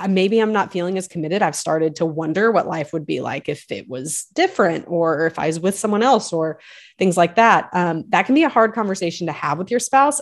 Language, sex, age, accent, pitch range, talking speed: English, female, 30-49, American, 165-205 Hz, 245 wpm